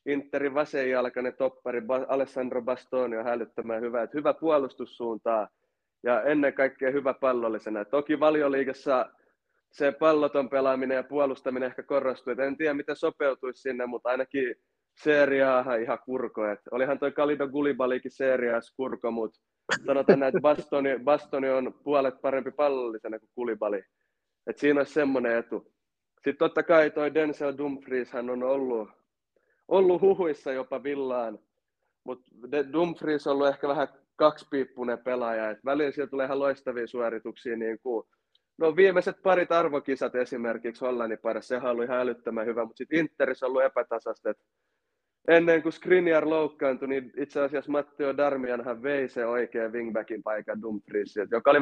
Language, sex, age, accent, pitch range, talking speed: Finnish, male, 20-39, native, 125-145 Hz, 150 wpm